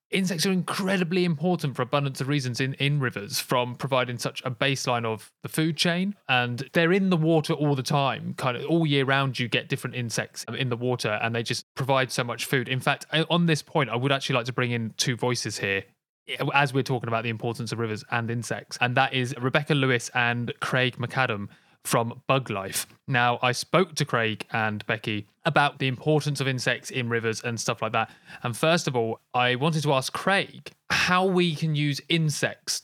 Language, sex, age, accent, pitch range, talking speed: English, male, 20-39, British, 120-145 Hz, 210 wpm